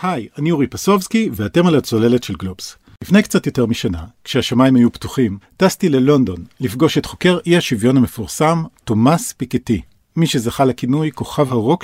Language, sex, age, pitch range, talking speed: Hebrew, male, 50-69, 115-175 Hz, 155 wpm